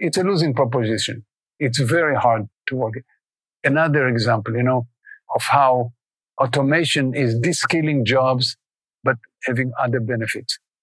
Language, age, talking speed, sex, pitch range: English, 50-69, 125 wpm, male, 125-160 Hz